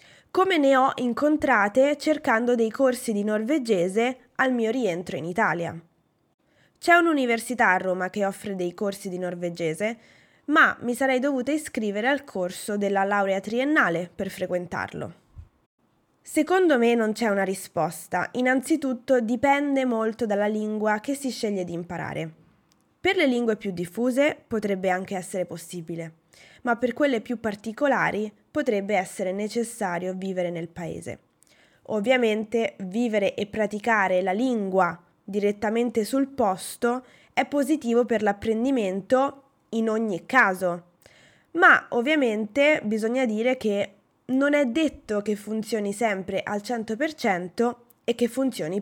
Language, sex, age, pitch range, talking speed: Italian, female, 20-39, 190-255 Hz, 130 wpm